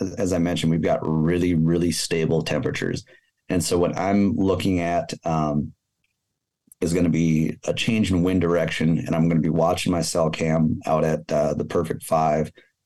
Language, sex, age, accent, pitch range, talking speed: English, male, 30-49, American, 80-95 Hz, 185 wpm